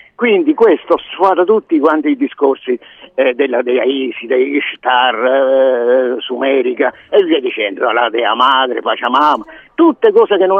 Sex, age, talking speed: male, 50-69, 145 wpm